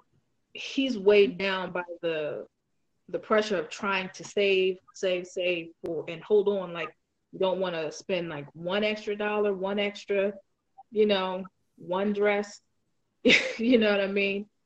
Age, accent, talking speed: 20-39, American, 155 wpm